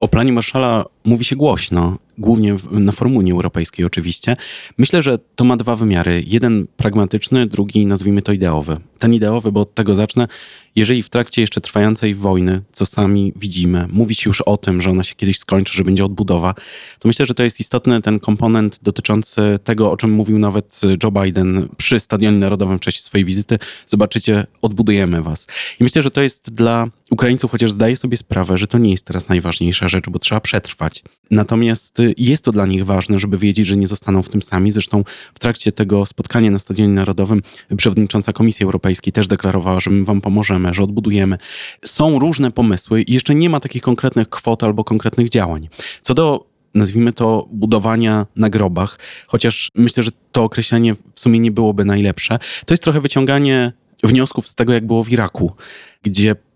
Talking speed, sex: 185 wpm, male